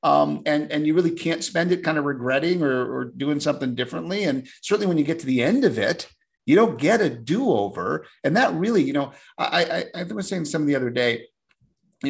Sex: male